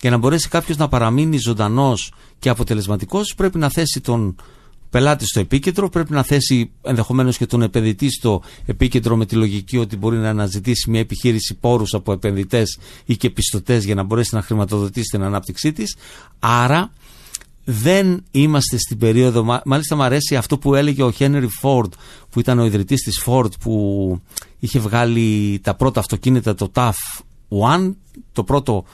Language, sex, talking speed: Greek, male, 165 wpm